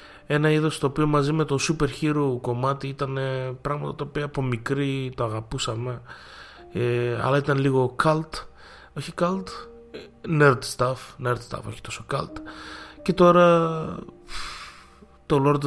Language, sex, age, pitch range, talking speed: Greek, male, 20-39, 120-150 Hz, 130 wpm